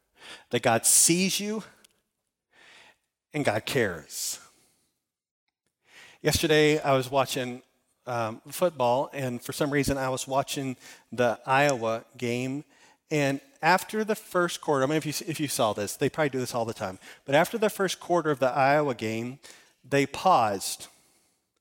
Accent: American